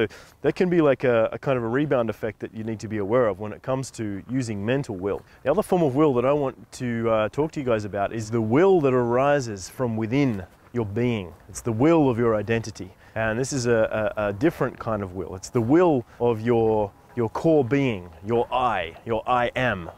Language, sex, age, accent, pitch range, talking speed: English, male, 20-39, Australian, 110-135 Hz, 235 wpm